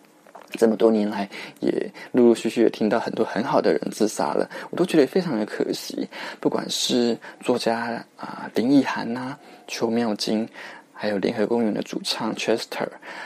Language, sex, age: Chinese, male, 20-39